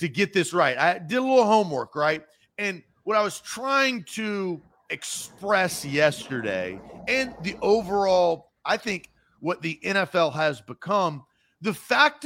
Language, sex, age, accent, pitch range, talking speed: English, male, 40-59, American, 160-210 Hz, 145 wpm